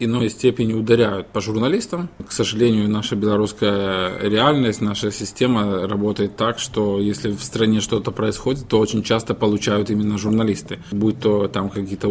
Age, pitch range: 20-39, 105-115 Hz